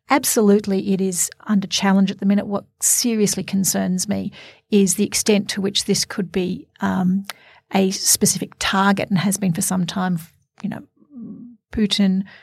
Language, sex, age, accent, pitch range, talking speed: English, female, 40-59, Australian, 190-210 Hz, 160 wpm